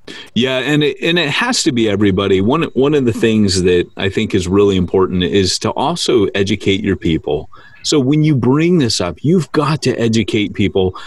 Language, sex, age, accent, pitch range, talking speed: English, male, 30-49, American, 100-140 Hz, 200 wpm